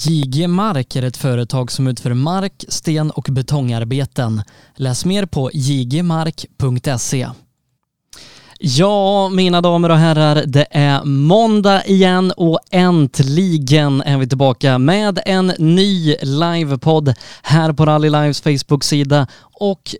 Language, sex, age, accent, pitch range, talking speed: Swedish, male, 20-39, native, 135-180 Hz, 115 wpm